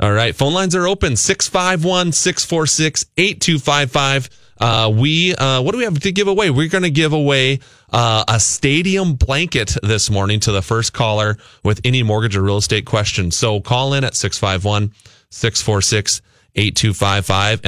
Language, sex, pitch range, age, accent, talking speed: English, male, 100-140 Hz, 30-49, American, 150 wpm